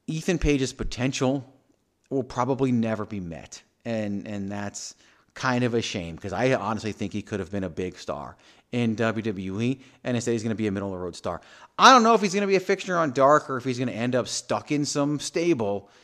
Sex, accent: male, American